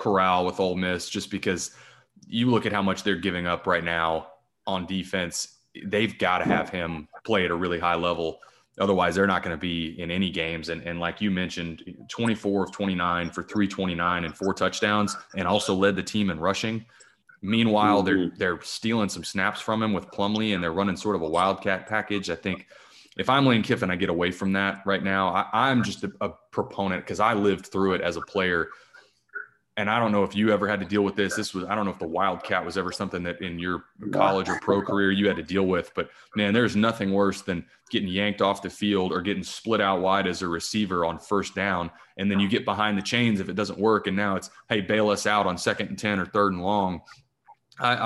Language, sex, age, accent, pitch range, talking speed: English, male, 20-39, American, 90-105 Hz, 235 wpm